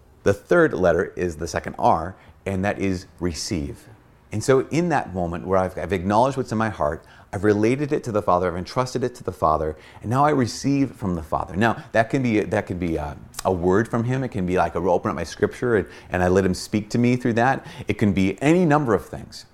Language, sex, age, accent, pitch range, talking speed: English, male, 30-49, American, 90-120 Hz, 250 wpm